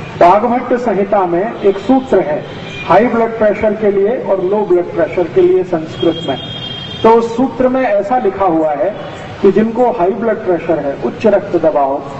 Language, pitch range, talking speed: English, 185-245 Hz, 175 wpm